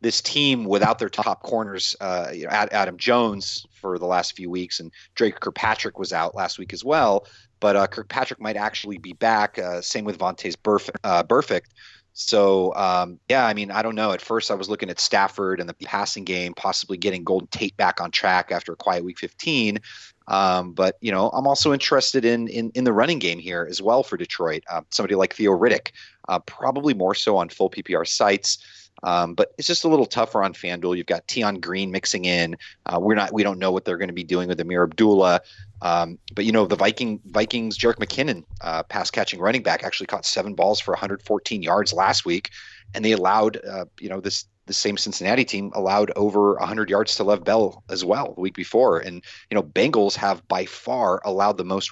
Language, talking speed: English, 215 wpm